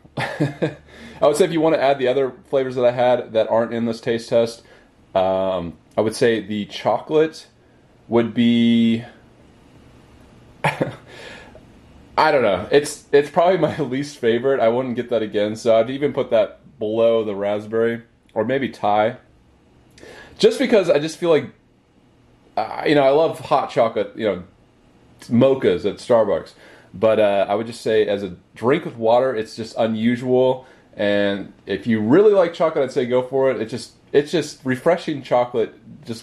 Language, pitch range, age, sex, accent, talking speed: English, 105-130 Hz, 30-49, male, American, 170 wpm